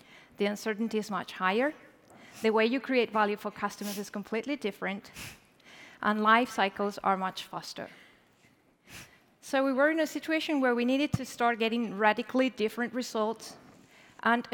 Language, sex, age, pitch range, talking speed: English, female, 30-49, 210-260 Hz, 155 wpm